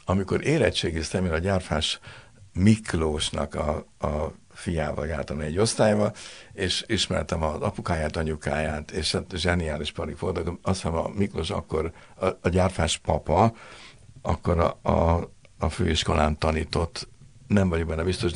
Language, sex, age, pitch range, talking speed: Hungarian, male, 60-79, 80-100 Hz, 125 wpm